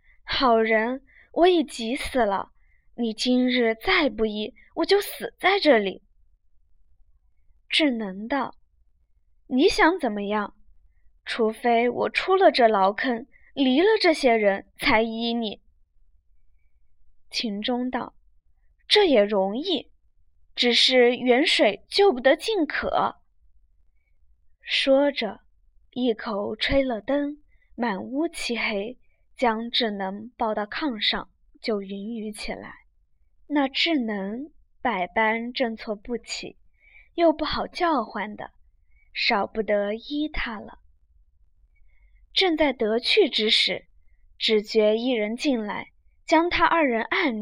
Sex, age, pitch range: female, 20-39, 185-275 Hz